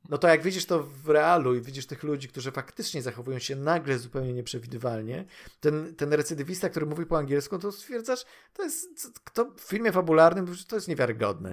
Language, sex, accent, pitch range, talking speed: Polish, male, native, 120-165 Hz, 205 wpm